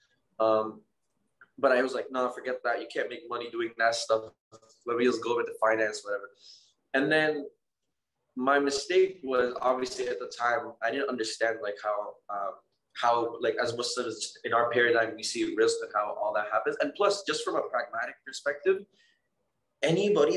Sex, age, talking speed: male, 20-39, 185 wpm